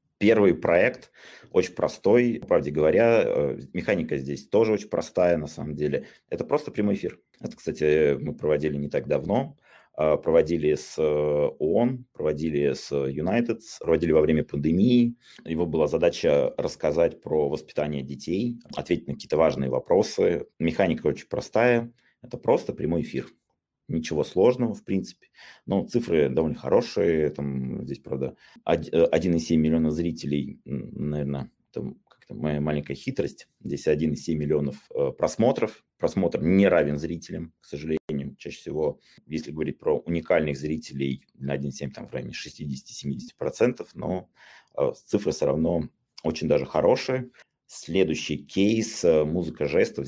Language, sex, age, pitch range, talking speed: Russian, male, 30-49, 75-115 Hz, 130 wpm